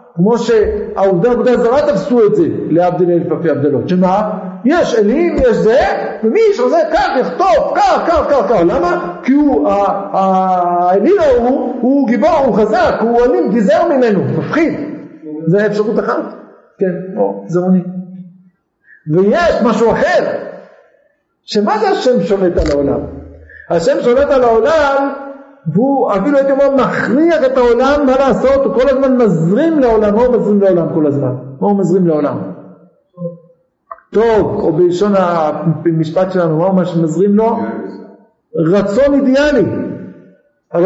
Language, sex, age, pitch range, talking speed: Hebrew, male, 50-69, 185-275 Hz, 115 wpm